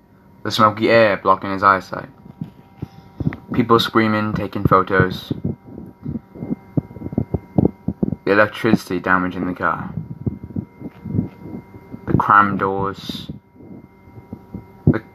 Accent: British